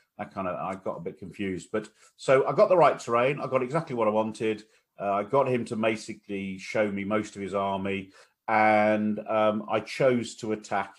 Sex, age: male, 40-59